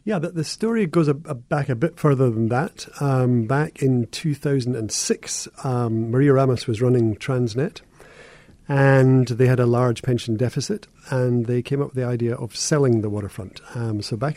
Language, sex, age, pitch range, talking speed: English, male, 40-59, 115-140 Hz, 185 wpm